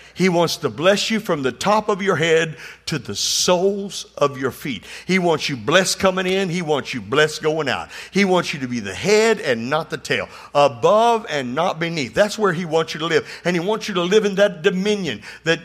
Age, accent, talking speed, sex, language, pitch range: 50-69, American, 235 wpm, male, English, 165-220 Hz